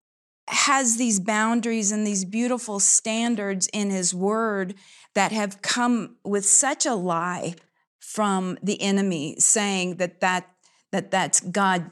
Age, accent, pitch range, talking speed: 40-59, American, 190-230 Hz, 130 wpm